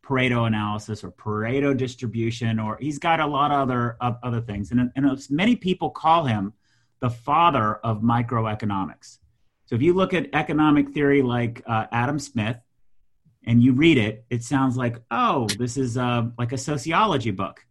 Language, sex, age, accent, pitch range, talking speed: English, male, 40-59, American, 110-140 Hz, 175 wpm